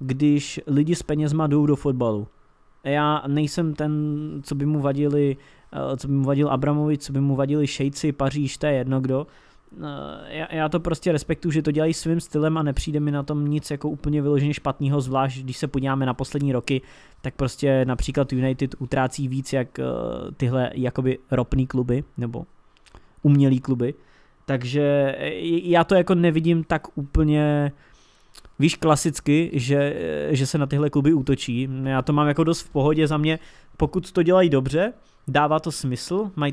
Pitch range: 130-150 Hz